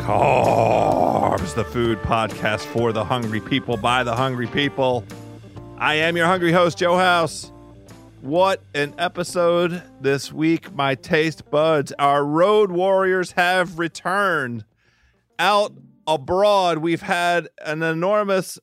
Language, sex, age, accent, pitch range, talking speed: English, male, 40-59, American, 145-185 Hz, 120 wpm